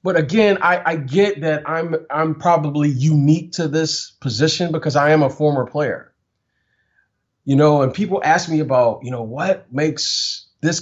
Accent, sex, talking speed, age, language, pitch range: American, male, 170 wpm, 30-49, English, 115-160 Hz